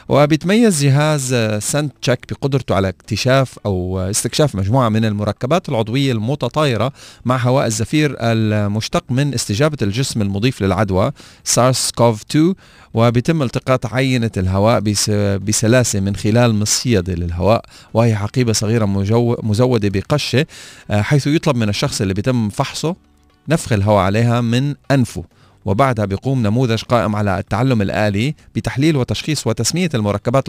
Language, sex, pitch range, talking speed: Arabic, male, 105-140 Hz, 120 wpm